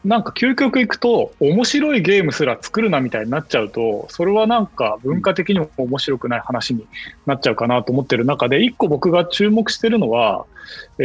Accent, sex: native, male